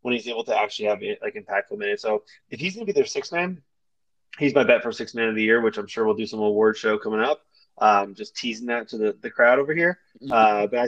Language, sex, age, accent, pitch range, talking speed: English, male, 20-39, American, 110-145 Hz, 280 wpm